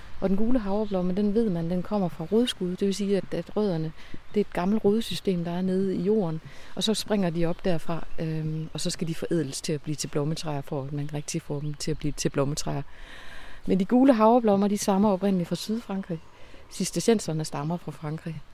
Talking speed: 215 wpm